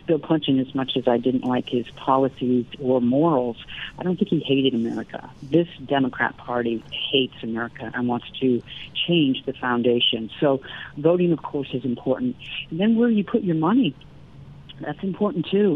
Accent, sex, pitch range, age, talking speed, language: American, female, 130-160 Hz, 50-69, 165 wpm, English